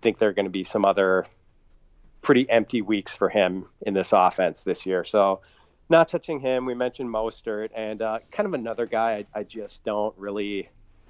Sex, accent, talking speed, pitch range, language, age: male, American, 200 wpm, 95-115 Hz, English, 40-59